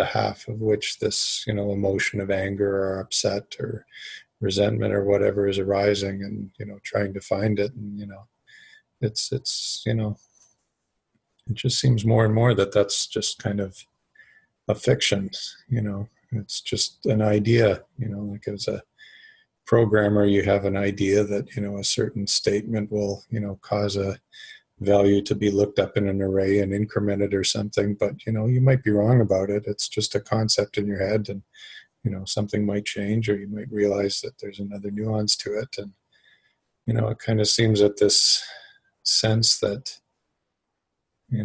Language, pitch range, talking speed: English, 100-110 Hz, 185 wpm